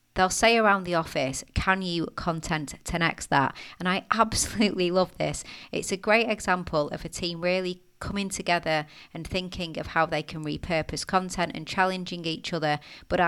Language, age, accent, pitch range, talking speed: English, 30-49, British, 155-185 Hz, 175 wpm